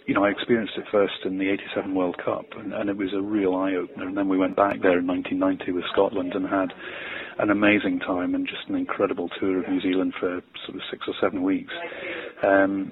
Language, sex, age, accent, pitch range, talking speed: English, male, 40-59, British, 95-120 Hz, 230 wpm